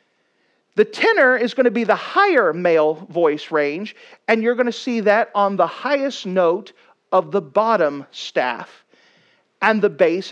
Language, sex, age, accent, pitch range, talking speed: English, male, 40-59, American, 185-285 Hz, 170 wpm